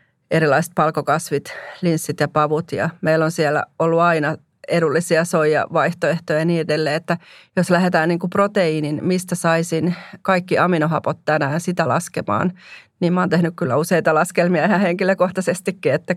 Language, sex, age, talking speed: Finnish, female, 30-49, 145 wpm